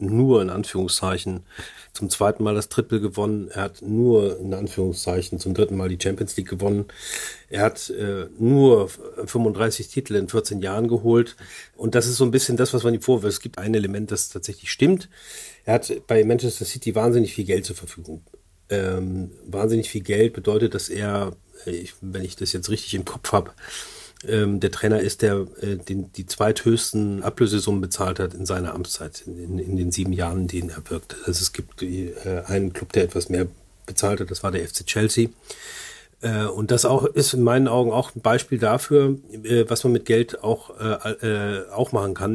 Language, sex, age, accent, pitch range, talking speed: German, male, 40-59, German, 95-115 Hz, 195 wpm